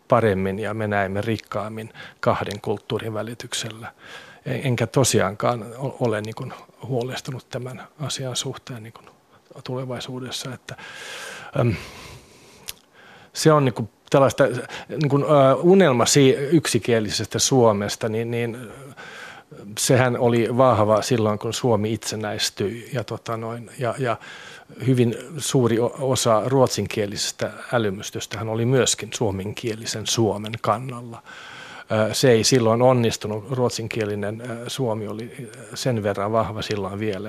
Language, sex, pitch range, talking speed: Finnish, male, 110-125 Hz, 110 wpm